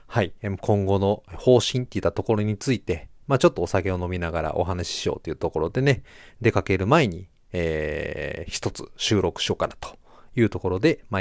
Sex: male